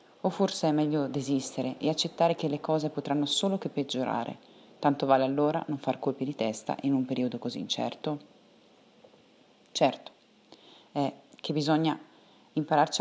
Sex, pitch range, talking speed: female, 135-165 Hz, 150 wpm